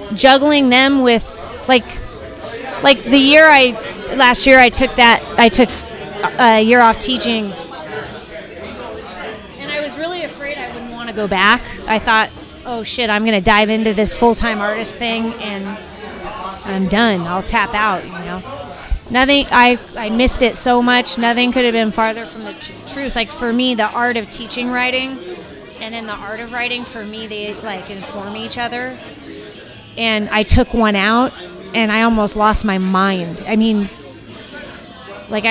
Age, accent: 30-49, American